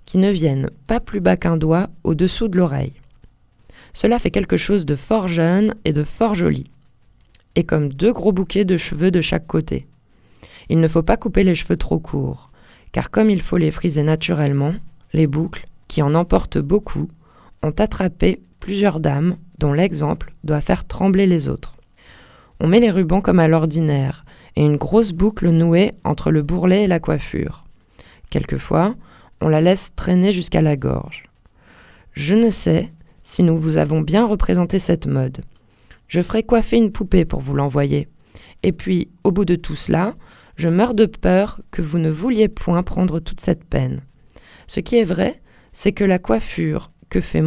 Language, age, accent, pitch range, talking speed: French, 20-39, French, 145-195 Hz, 175 wpm